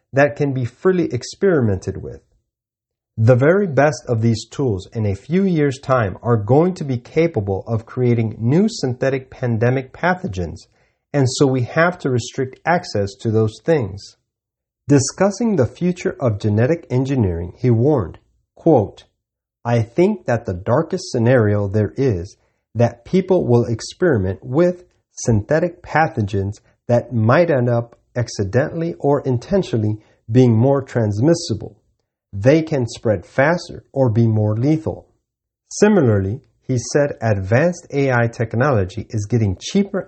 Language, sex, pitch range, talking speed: English, male, 110-150 Hz, 135 wpm